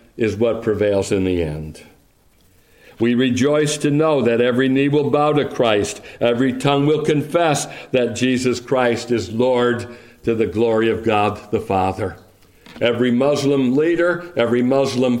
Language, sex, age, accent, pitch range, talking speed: English, male, 60-79, American, 115-150 Hz, 150 wpm